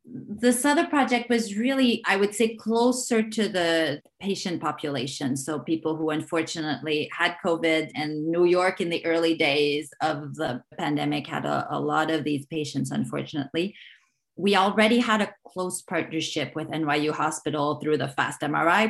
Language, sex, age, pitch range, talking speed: English, female, 30-49, 150-175 Hz, 160 wpm